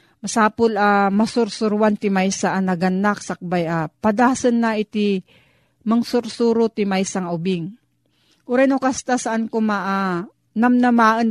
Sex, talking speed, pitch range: female, 105 wpm, 180-220 Hz